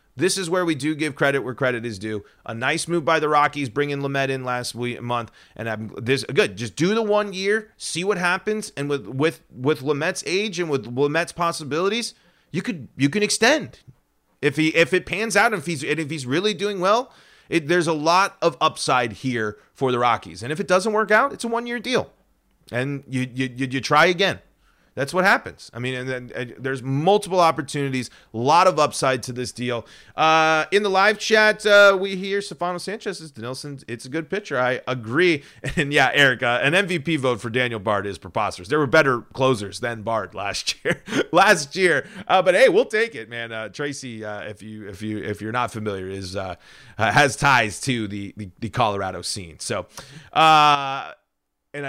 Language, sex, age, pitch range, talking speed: English, male, 30-49, 120-175 Hz, 205 wpm